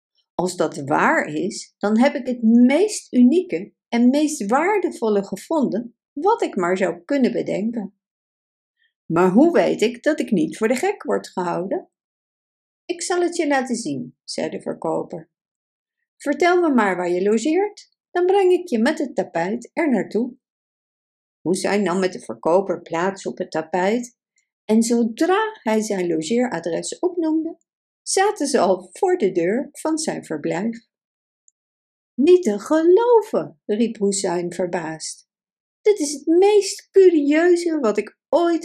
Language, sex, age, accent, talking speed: Dutch, female, 50-69, Dutch, 145 wpm